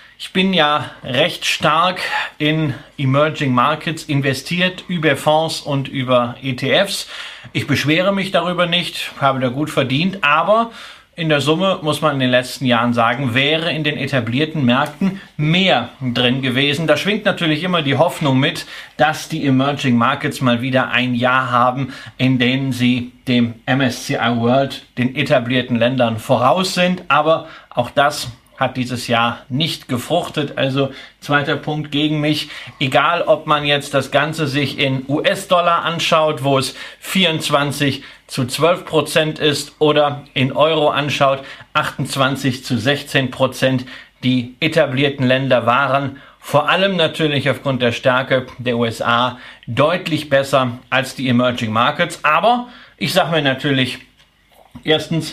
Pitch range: 130-155 Hz